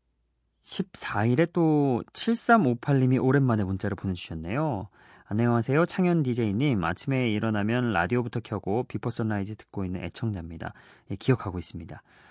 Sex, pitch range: male, 100-135 Hz